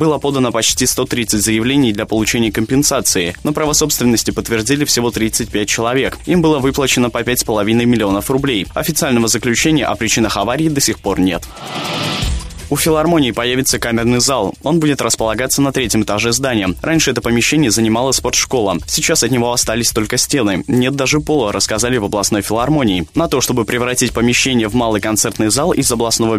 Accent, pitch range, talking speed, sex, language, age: native, 110-135 Hz, 165 wpm, male, Russian, 20-39